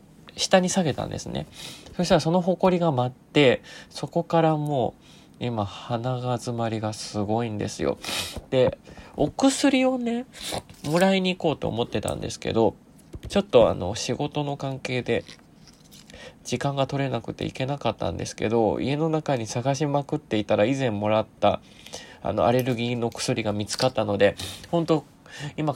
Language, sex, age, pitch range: Japanese, male, 20-39, 110-150 Hz